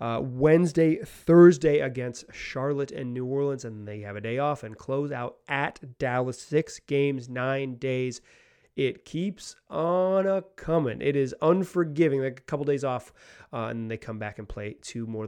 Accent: American